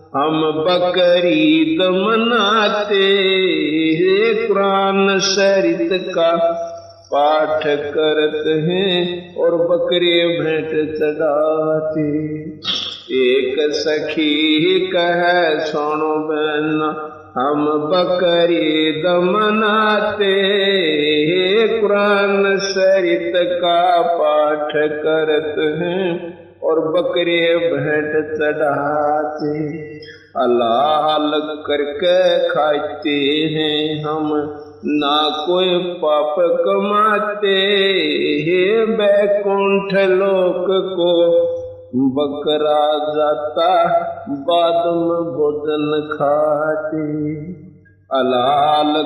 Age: 50-69